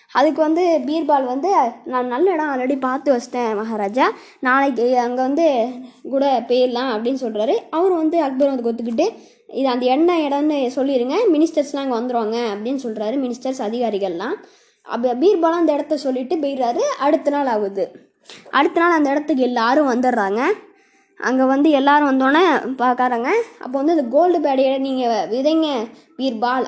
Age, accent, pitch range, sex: 20-39, native, 240-315 Hz, female